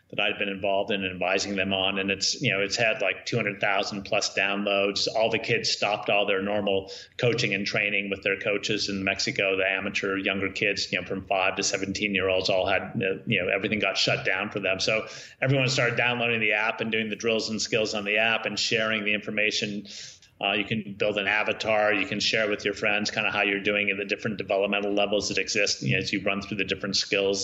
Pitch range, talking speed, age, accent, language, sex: 95-105 Hz, 240 wpm, 30-49, American, English, male